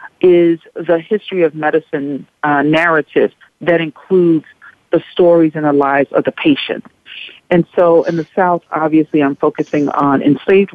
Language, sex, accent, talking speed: English, female, American, 150 wpm